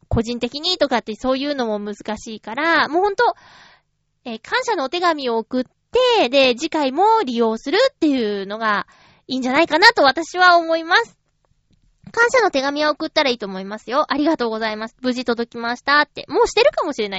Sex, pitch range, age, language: female, 270-390 Hz, 20-39, Japanese